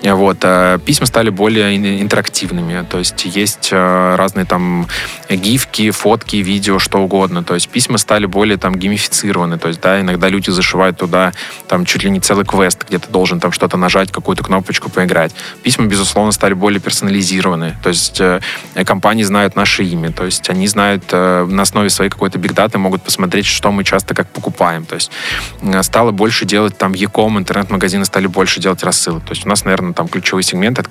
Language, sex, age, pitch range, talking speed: Russian, male, 20-39, 95-105 Hz, 180 wpm